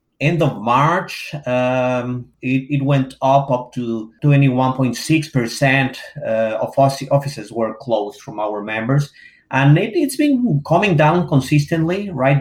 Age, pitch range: 30-49, 115-140 Hz